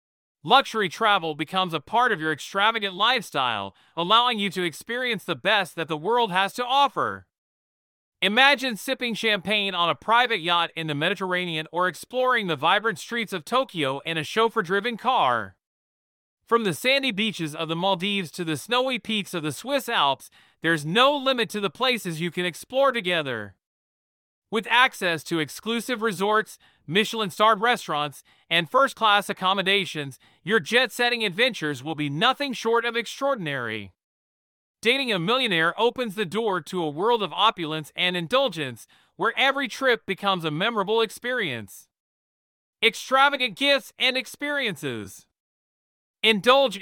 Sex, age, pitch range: male, 40-59, 160-235 Hz